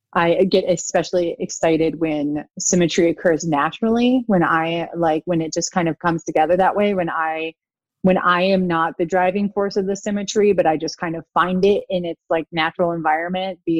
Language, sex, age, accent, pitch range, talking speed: English, female, 20-39, American, 165-190 Hz, 195 wpm